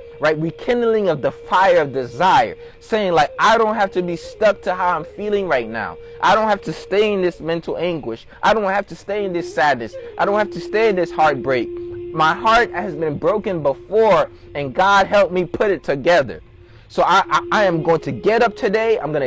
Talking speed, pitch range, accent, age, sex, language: 220 wpm, 170-220 Hz, American, 20-39, male, English